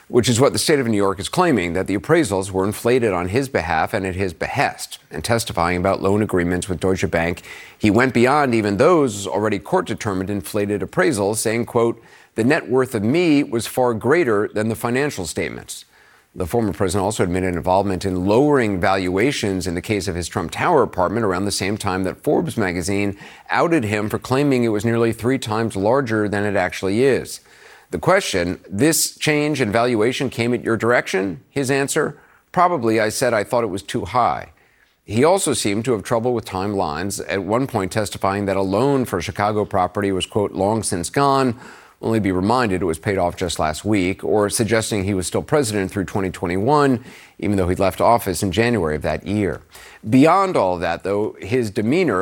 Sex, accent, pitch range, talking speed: male, American, 95-120 Hz, 195 wpm